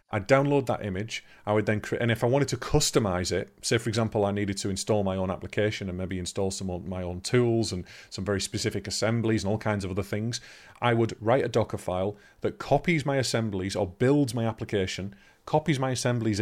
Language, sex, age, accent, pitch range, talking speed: English, male, 30-49, British, 95-110 Hz, 225 wpm